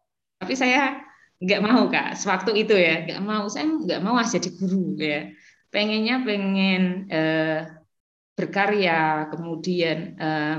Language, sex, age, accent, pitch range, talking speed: Indonesian, female, 20-39, native, 160-195 Hz, 125 wpm